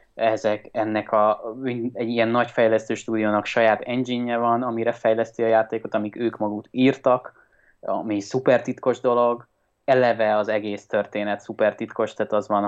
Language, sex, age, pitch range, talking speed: Hungarian, male, 20-39, 105-120 Hz, 150 wpm